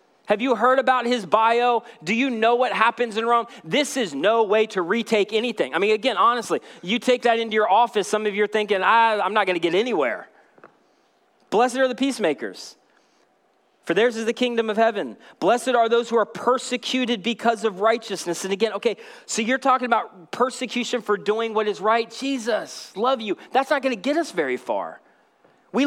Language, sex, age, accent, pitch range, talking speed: English, male, 30-49, American, 220-270 Hz, 200 wpm